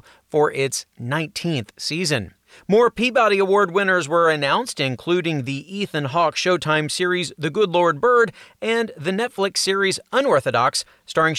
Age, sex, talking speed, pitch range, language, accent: 40-59, male, 135 wpm, 140-190 Hz, English, American